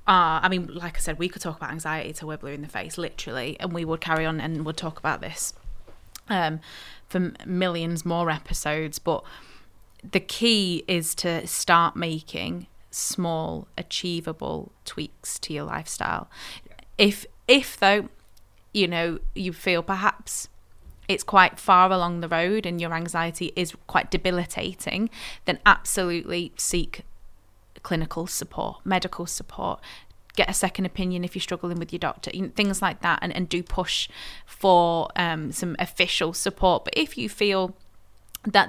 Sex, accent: female, British